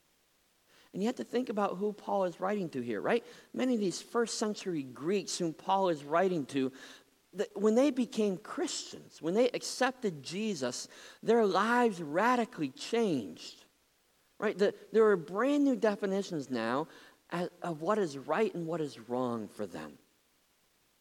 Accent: American